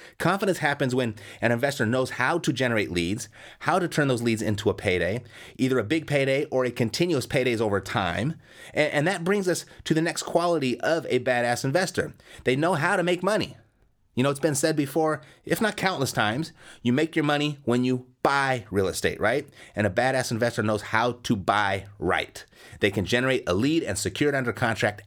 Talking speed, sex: 205 wpm, male